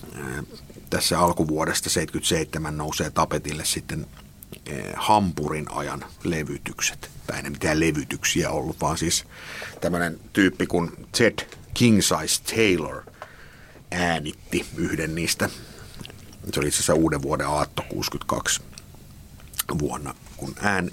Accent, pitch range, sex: native, 75-90 Hz, male